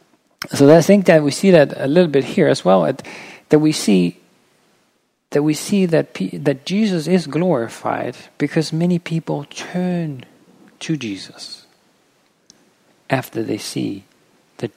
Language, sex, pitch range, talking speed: English, male, 120-155 Hz, 140 wpm